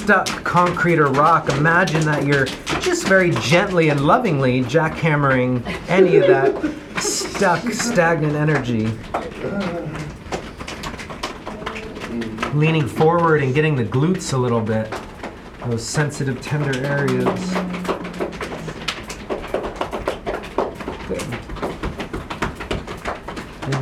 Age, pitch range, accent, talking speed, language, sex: 30-49, 125-170 Hz, American, 90 wpm, English, male